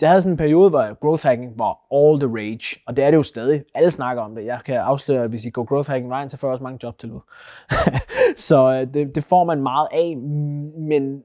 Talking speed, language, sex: 250 wpm, Danish, male